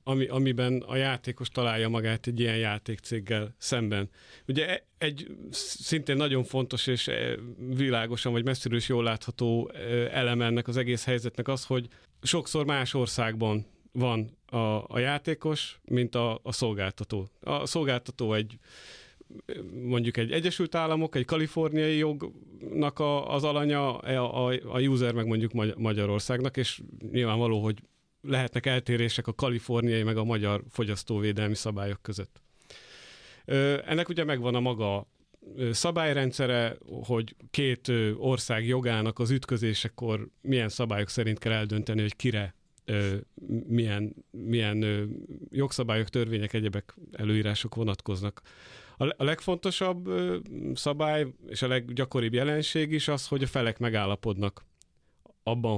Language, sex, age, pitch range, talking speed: Hungarian, male, 40-59, 110-130 Hz, 120 wpm